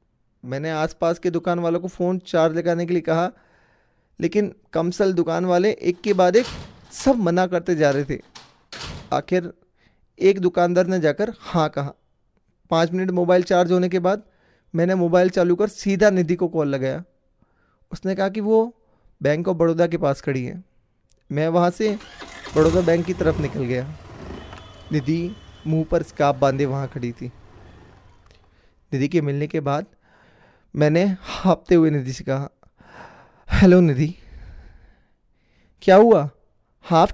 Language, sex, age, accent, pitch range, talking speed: Hindi, male, 20-39, native, 135-180 Hz, 155 wpm